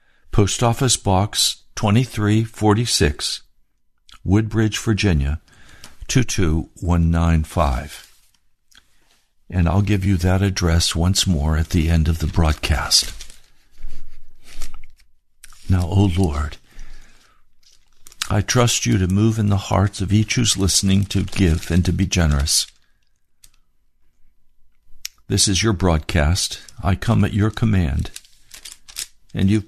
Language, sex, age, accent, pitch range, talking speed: English, male, 60-79, American, 80-105 Hz, 105 wpm